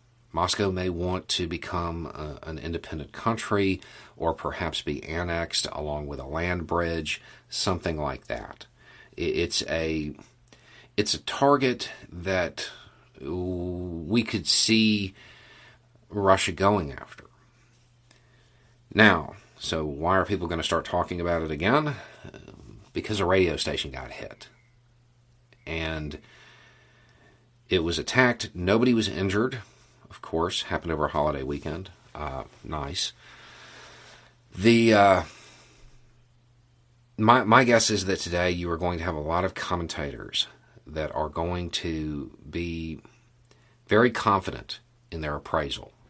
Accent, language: American, English